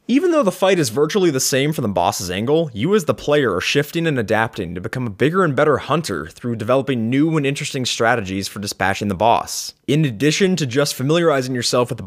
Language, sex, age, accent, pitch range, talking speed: English, male, 20-39, American, 115-155 Hz, 225 wpm